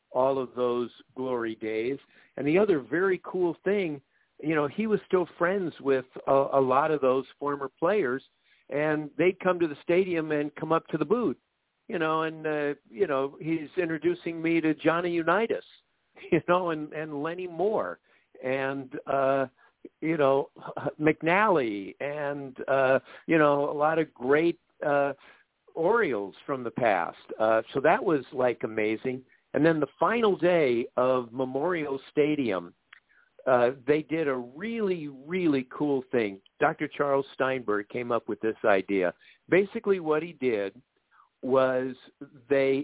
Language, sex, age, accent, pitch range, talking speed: English, male, 60-79, American, 130-165 Hz, 155 wpm